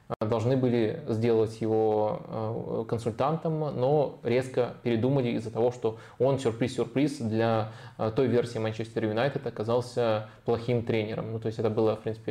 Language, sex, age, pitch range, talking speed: Russian, male, 20-39, 115-130 Hz, 135 wpm